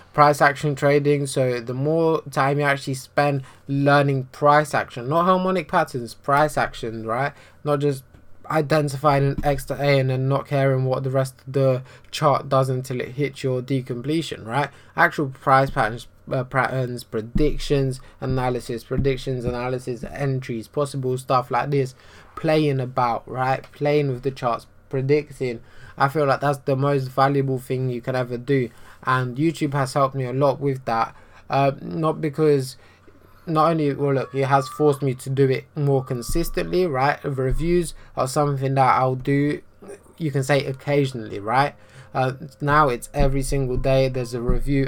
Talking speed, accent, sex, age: 165 wpm, British, male, 20-39